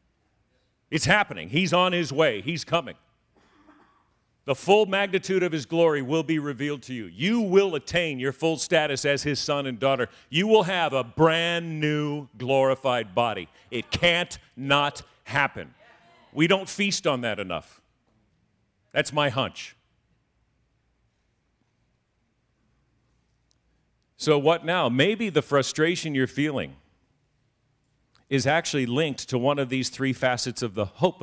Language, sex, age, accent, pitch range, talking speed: English, male, 50-69, American, 105-150 Hz, 135 wpm